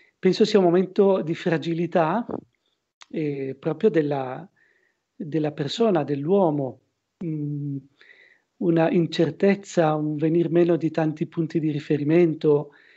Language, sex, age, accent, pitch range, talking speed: Italian, male, 40-59, native, 150-185 Hz, 100 wpm